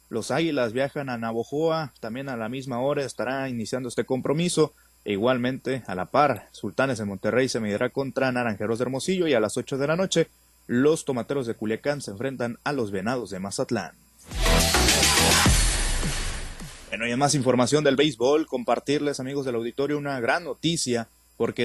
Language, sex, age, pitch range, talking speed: Spanish, male, 30-49, 115-145 Hz, 170 wpm